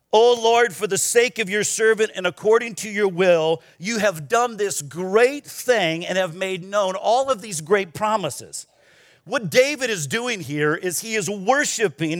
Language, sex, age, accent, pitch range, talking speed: English, male, 50-69, American, 155-215 Hz, 180 wpm